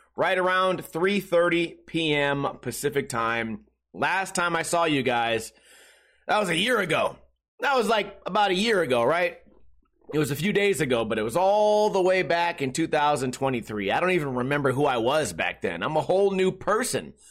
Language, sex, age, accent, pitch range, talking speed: English, male, 30-49, American, 150-190 Hz, 185 wpm